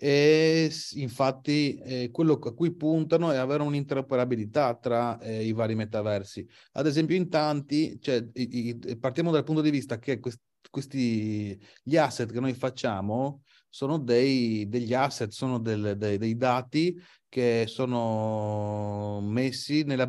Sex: male